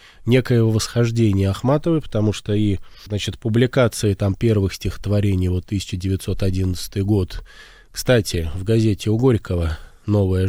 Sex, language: male, Russian